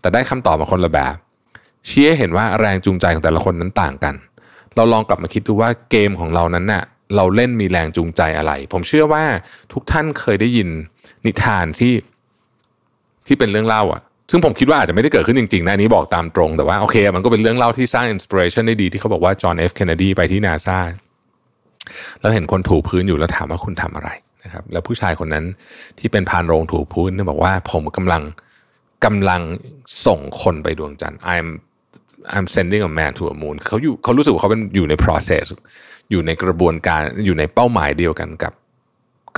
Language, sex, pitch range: Thai, male, 85-110 Hz